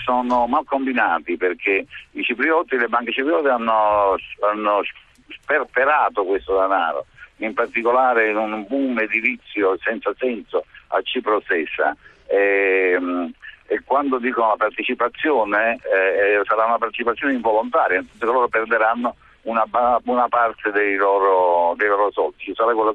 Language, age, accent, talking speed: Italian, 60-79, native, 135 wpm